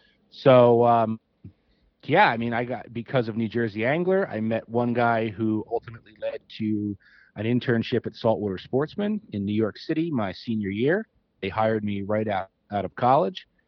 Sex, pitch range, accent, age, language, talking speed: male, 110-140 Hz, American, 40-59, English, 175 wpm